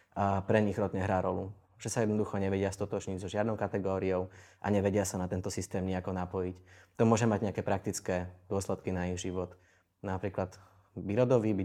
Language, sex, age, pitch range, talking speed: Slovak, male, 20-39, 95-105 Hz, 180 wpm